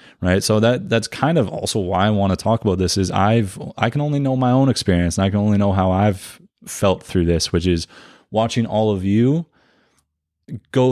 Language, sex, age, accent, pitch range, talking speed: English, male, 20-39, American, 95-115 Hz, 220 wpm